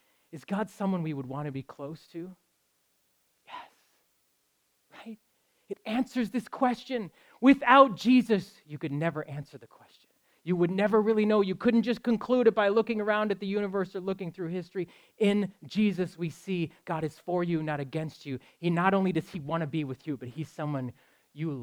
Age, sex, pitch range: 30-49, male, 135-195 Hz